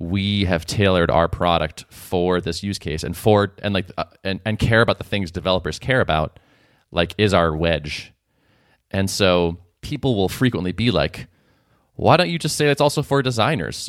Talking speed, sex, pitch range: 185 wpm, male, 85-120 Hz